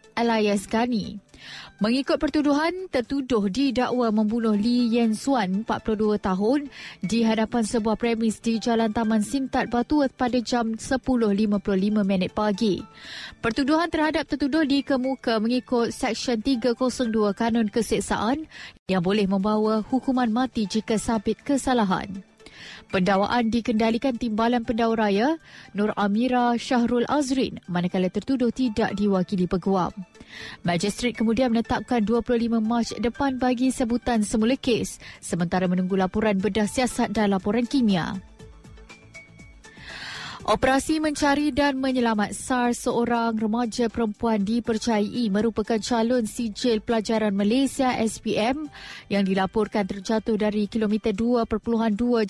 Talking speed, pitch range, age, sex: 110 wpm, 215-250 Hz, 20-39, female